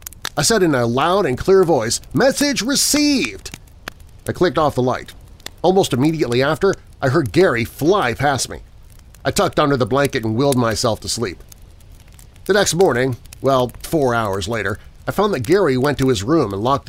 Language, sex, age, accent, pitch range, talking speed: English, male, 40-59, American, 100-145 Hz, 180 wpm